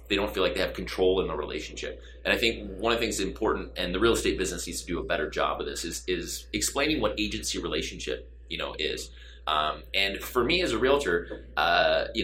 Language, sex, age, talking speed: English, male, 30-49, 240 wpm